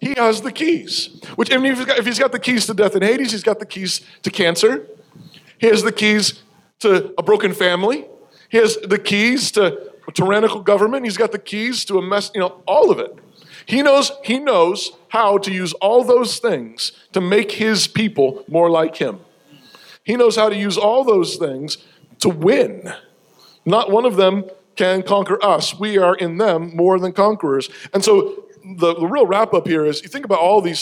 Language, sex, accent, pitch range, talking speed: English, male, American, 180-225 Hz, 210 wpm